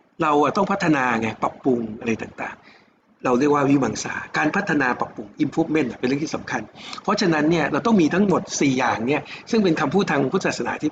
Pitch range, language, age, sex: 135-180 Hz, Thai, 60-79, male